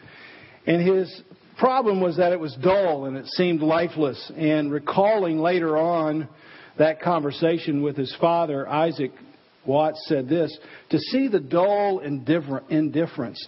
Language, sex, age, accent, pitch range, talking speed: English, male, 50-69, American, 145-185 Hz, 135 wpm